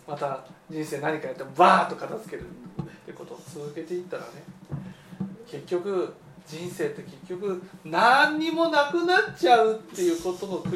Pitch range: 170-180 Hz